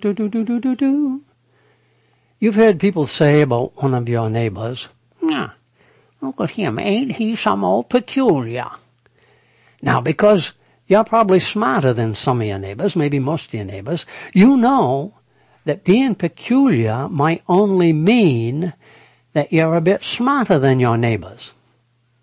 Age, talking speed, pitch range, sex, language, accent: 60-79, 145 wpm, 120-195 Hz, male, English, American